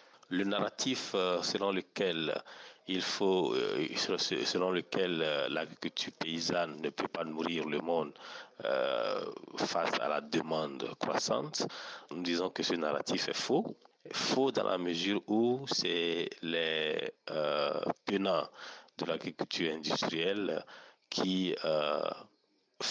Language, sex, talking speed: French, male, 100 wpm